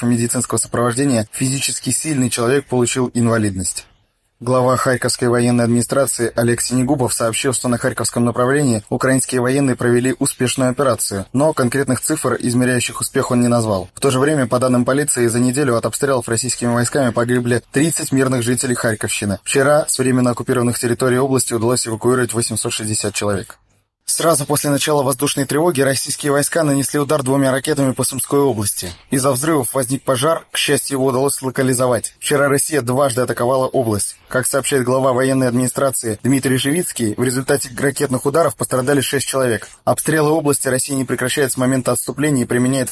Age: 20-39